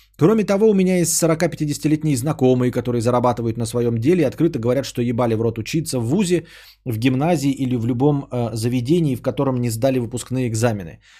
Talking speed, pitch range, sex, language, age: 190 wpm, 120-155 Hz, male, Bulgarian, 20-39